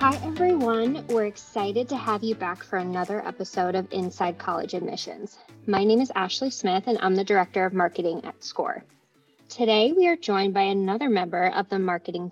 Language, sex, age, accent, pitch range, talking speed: English, female, 20-39, American, 190-235 Hz, 185 wpm